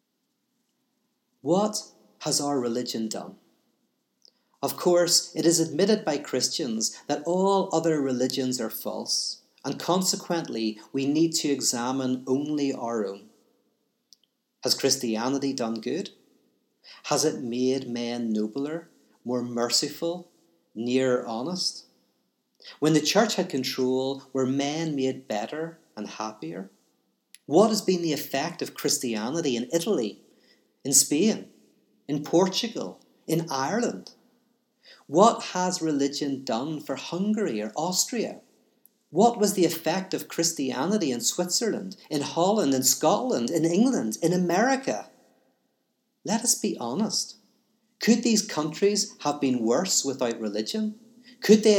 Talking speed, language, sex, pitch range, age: 120 wpm, English, male, 130-210 Hz, 40-59